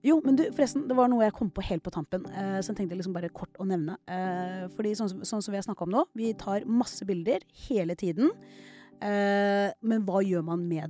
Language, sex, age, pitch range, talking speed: English, female, 30-49, 180-230 Hz, 225 wpm